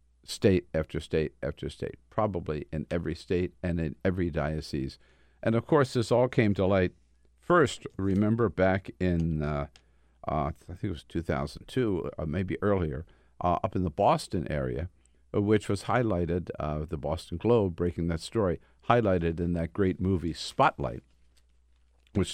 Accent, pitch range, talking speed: American, 80-105 Hz, 155 wpm